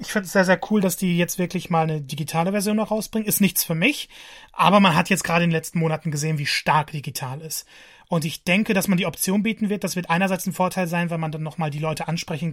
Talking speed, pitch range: 270 wpm, 160-200 Hz